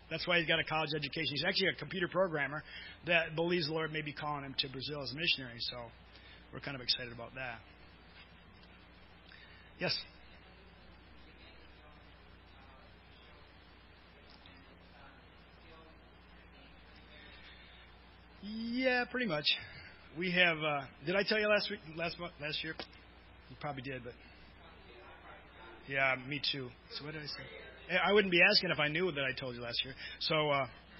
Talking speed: 145 wpm